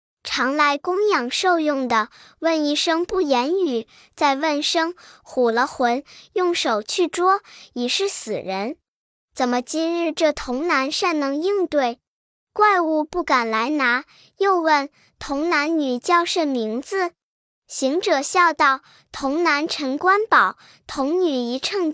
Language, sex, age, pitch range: Chinese, male, 10-29, 275-365 Hz